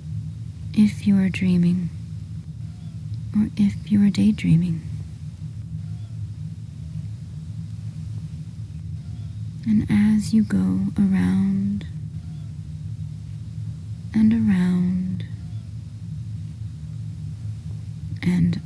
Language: English